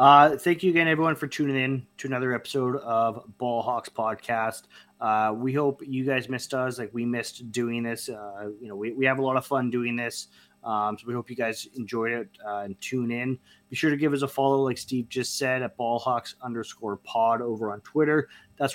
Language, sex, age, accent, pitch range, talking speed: English, male, 20-39, American, 115-140 Hz, 220 wpm